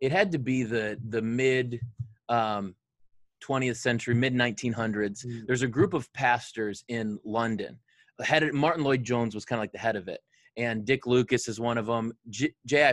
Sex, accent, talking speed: male, American, 165 wpm